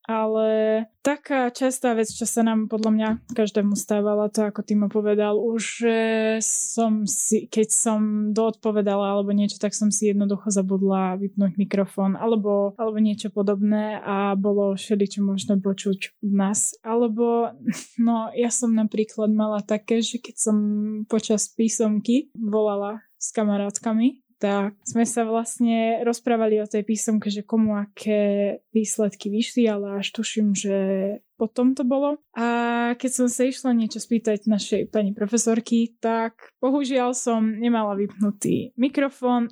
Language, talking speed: Slovak, 140 wpm